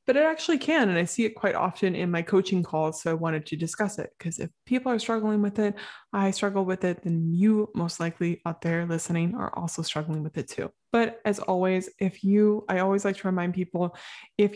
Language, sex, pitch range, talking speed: English, female, 170-200 Hz, 230 wpm